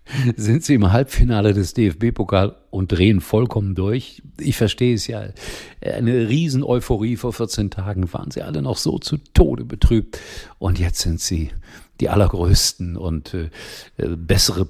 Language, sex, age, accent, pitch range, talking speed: German, male, 50-69, German, 85-110 Hz, 145 wpm